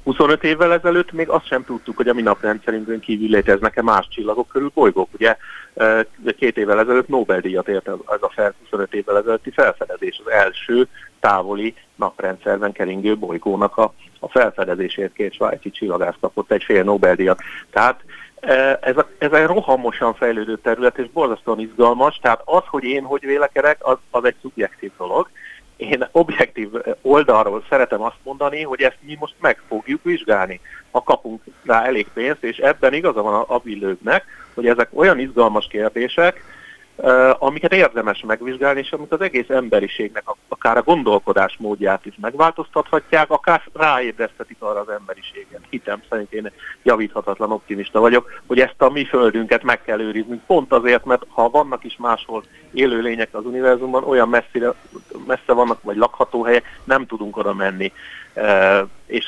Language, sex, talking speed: Hungarian, male, 150 wpm